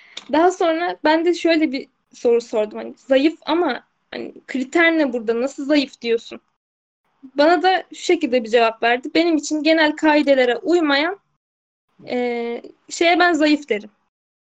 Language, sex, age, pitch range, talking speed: Turkish, female, 10-29, 245-340 Hz, 145 wpm